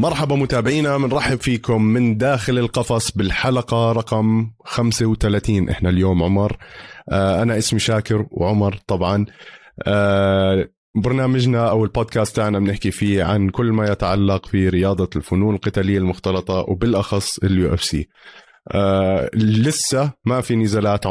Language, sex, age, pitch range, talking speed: Arabic, male, 20-39, 95-120 Hz, 120 wpm